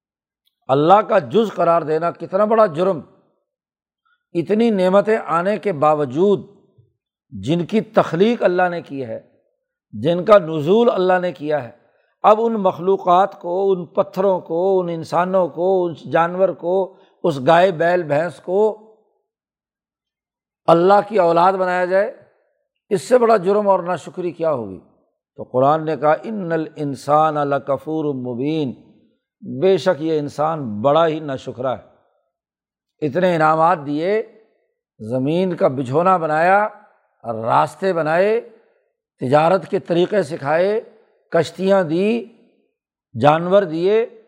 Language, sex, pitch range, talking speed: Urdu, male, 155-200 Hz, 125 wpm